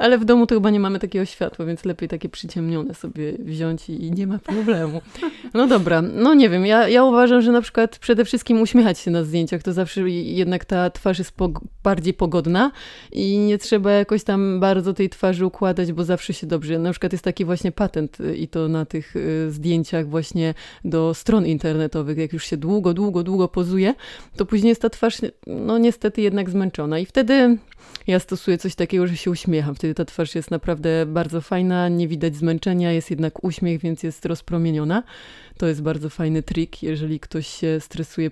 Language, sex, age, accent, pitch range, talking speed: Polish, female, 20-39, native, 165-200 Hz, 190 wpm